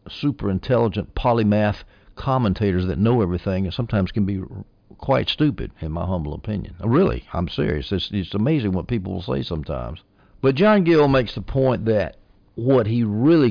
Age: 60-79